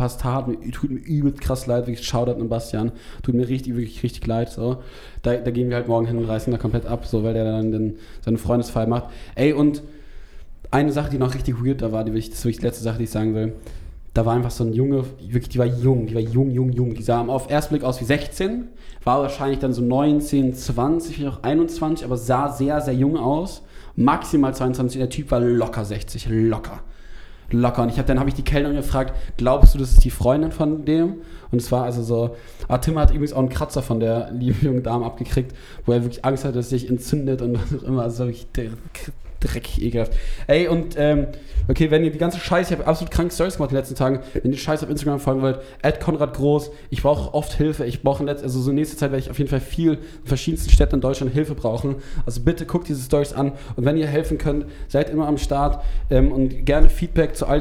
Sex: male